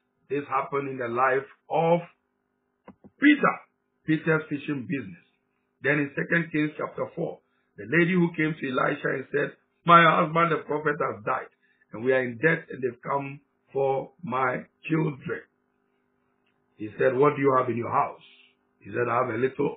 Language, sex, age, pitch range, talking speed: English, male, 60-79, 130-165 Hz, 170 wpm